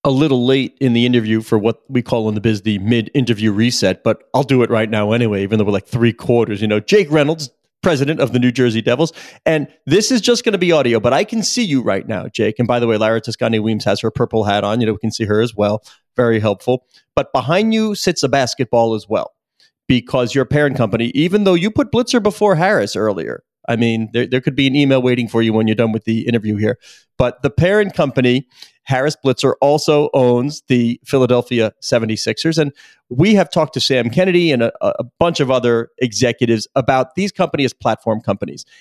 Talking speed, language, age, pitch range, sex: 225 wpm, English, 40-59, 115-150 Hz, male